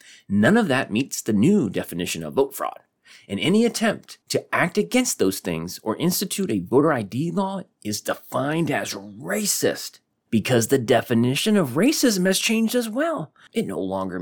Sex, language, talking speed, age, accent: male, English, 170 wpm, 30-49, American